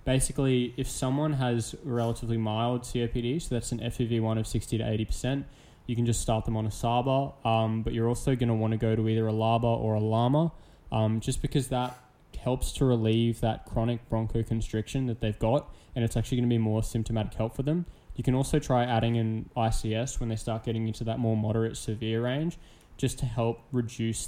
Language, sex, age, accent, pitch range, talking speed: English, male, 10-29, Australian, 110-125 Hz, 210 wpm